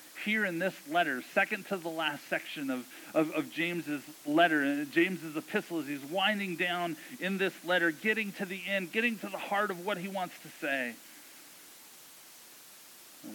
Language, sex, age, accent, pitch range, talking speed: English, male, 40-59, American, 170-215 Hz, 175 wpm